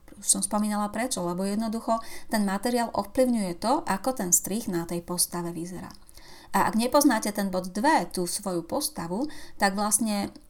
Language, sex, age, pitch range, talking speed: Slovak, female, 30-49, 180-230 Hz, 160 wpm